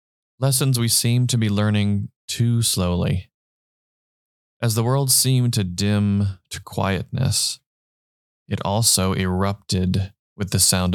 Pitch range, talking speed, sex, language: 95-110 Hz, 120 wpm, male, English